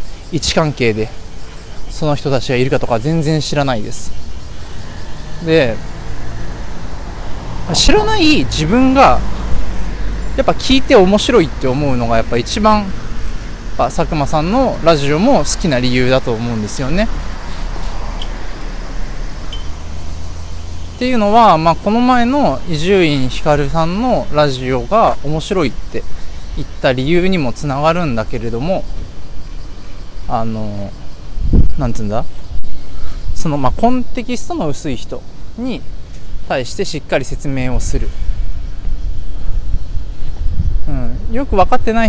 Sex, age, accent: male, 20-39, native